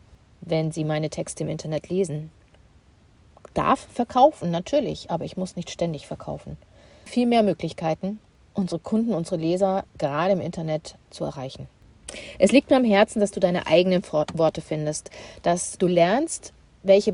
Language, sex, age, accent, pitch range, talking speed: German, female, 40-59, German, 155-210 Hz, 150 wpm